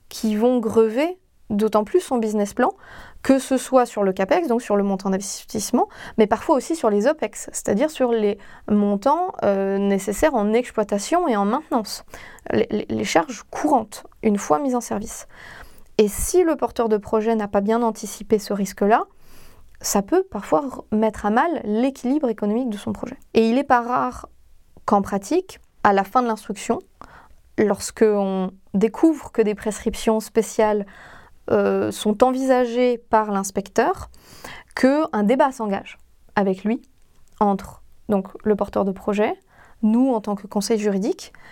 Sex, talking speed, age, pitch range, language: female, 155 wpm, 20-39, 205-250 Hz, French